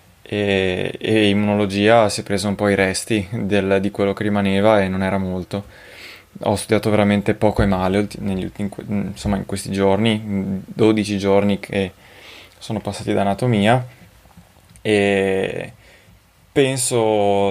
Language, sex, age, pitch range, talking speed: Italian, male, 20-39, 95-105 Hz, 135 wpm